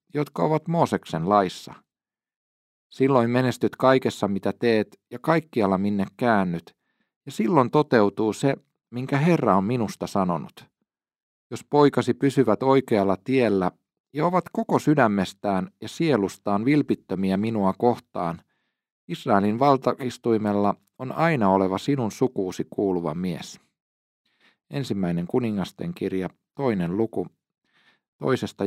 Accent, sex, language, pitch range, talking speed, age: native, male, Finnish, 100-140 Hz, 105 wpm, 40-59